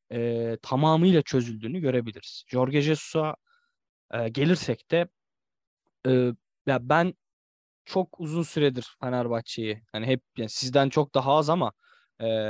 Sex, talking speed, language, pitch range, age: male, 120 wpm, Turkish, 115-145 Hz, 20-39